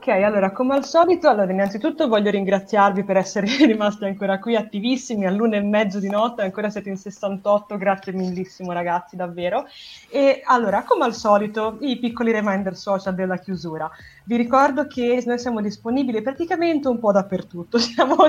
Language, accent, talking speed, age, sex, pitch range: Italian, native, 165 wpm, 20-39, female, 185-245 Hz